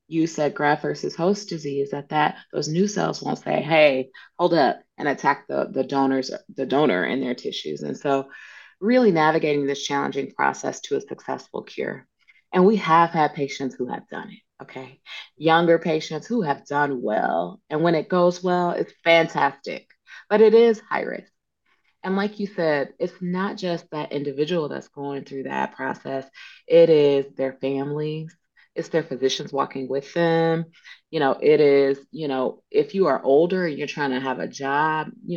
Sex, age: female, 30-49